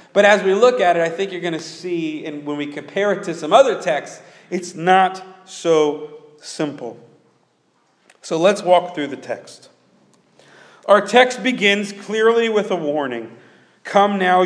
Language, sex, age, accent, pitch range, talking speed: English, male, 40-59, American, 150-195 Hz, 165 wpm